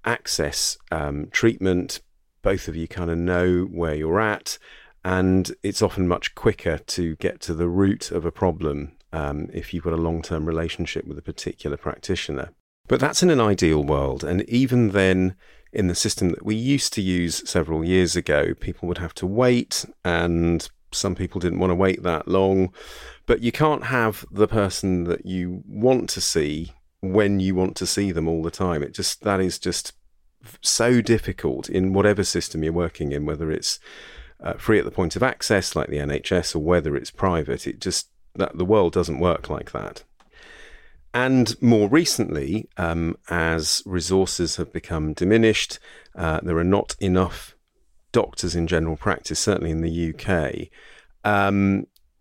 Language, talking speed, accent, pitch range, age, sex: English, 175 wpm, British, 80-100 Hz, 40-59, male